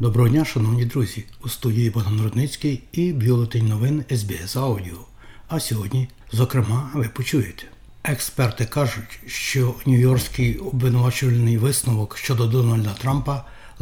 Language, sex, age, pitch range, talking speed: Ukrainian, male, 60-79, 115-130 Hz, 120 wpm